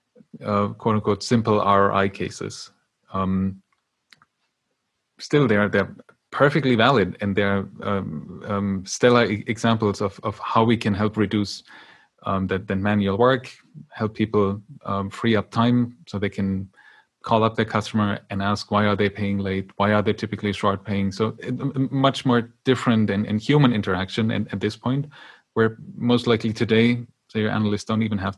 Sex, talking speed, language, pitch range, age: male, 165 wpm, English, 100-115 Hz, 20-39